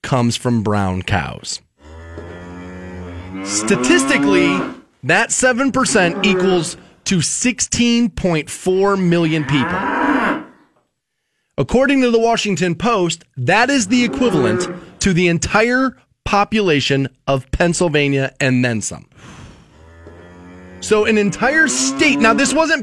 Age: 30-49